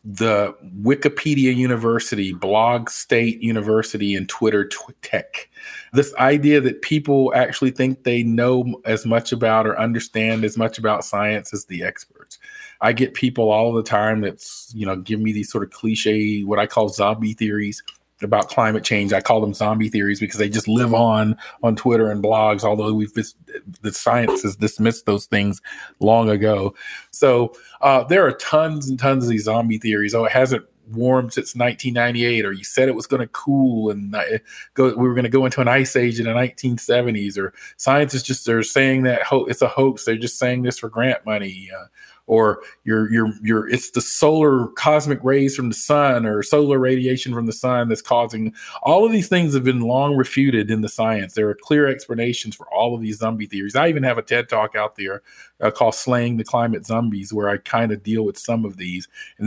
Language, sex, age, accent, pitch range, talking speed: English, male, 40-59, American, 105-130 Hz, 195 wpm